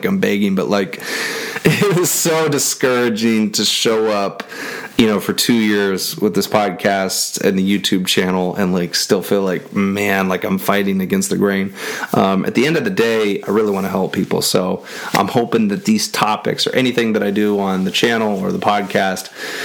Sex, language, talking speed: male, English, 200 wpm